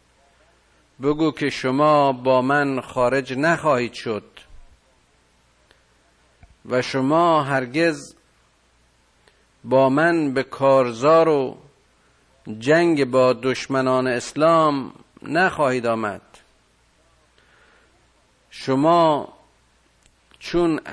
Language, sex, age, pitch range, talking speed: Persian, male, 50-69, 105-150 Hz, 70 wpm